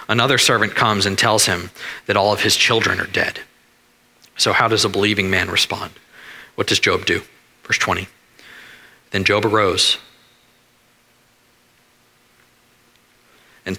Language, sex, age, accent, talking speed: English, male, 40-59, American, 130 wpm